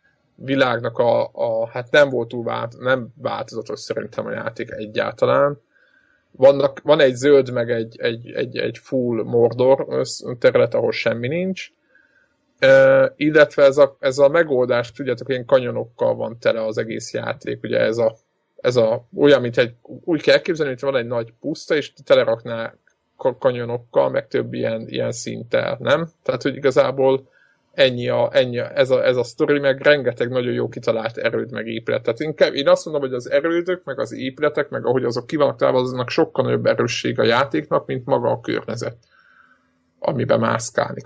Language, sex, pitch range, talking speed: Hungarian, male, 125-170 Hz, 170 wpm